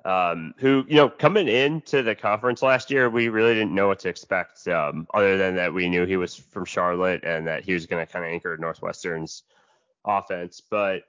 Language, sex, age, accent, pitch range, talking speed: English, male, 20-39, American, 90-115 Hz, 210 wpm